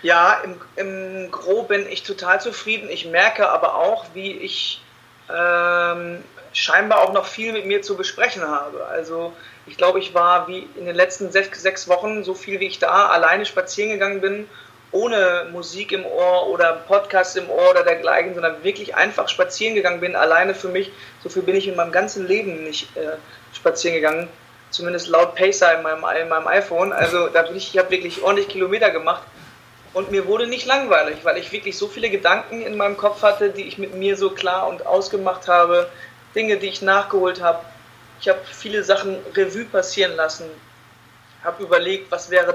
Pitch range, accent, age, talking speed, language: 175-200 Hz, German, 30-49, 190 wpm, German